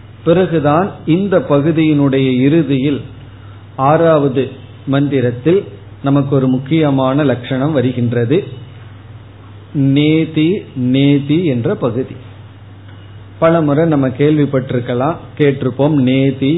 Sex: male